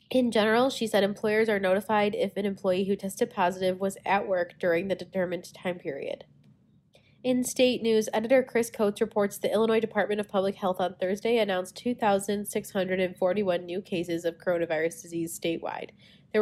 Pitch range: 185-225 Hz